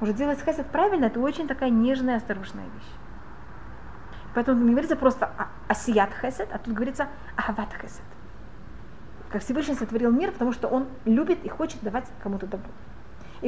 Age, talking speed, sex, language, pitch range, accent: 30-49, 165 wpm, female, Russian, 225-275 Hz, native